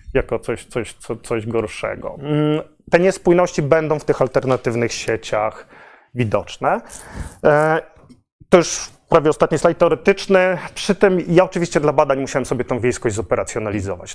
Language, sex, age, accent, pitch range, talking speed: Polish, male, 30-49, native, 125-155 Hz, 125 wpm